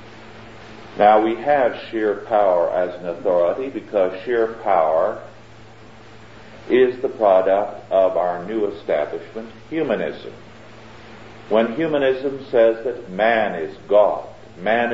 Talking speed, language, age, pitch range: 110 wpm, English, 50-69, 105-115 Hz